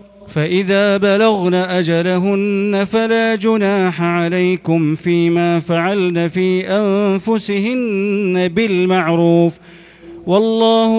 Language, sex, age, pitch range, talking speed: Arabic, male, 40-59, 175-205 Hz, 65 wpm